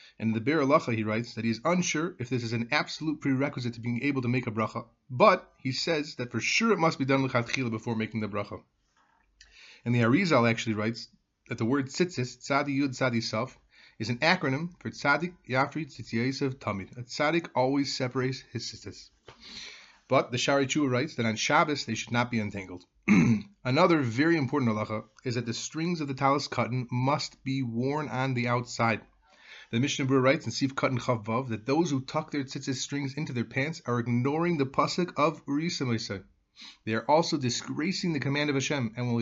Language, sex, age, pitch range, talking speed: English, male, 30-49, 115-145 Hz, 200 wpm